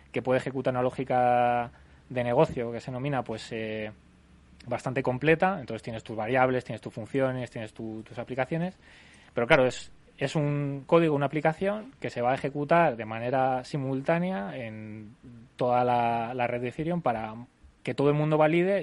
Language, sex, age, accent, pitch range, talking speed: Spanish, male, 20-39, Spanish, 120-145 Hz, 170 wpm